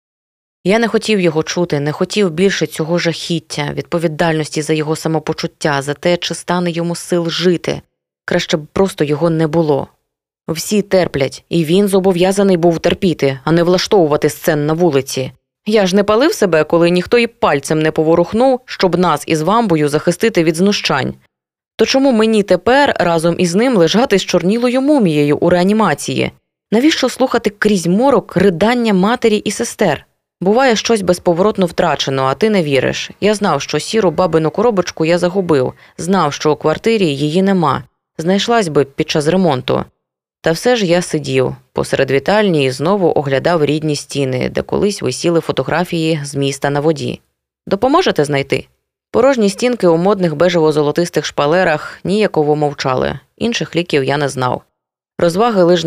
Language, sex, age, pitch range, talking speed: Ukrainian, female, 20-39, 150-195 Hz, 155 wpm